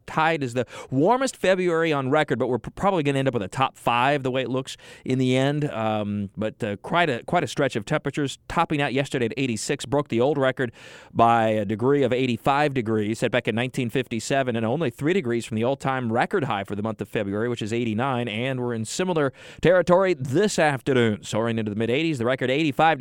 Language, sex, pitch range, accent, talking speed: English, male, 120-155 Hz, American, 220 wpm